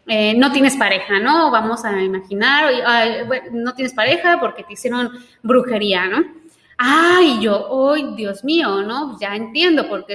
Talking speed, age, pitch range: 175 wpm, 20-39, 210-285 Hz